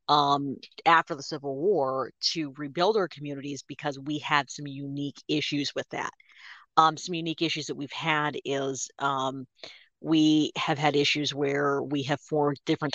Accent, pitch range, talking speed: American, 140-150 Hz, 160 wpm